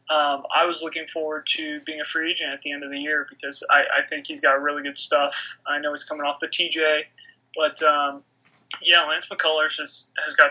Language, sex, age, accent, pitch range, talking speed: English, male, 20-39, American, 150-170 Hz, 240 wpm